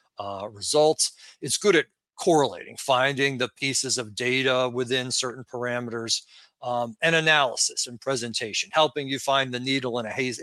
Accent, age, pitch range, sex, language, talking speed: American, 40-59, 120-140 Hz, male, English, 155 wpm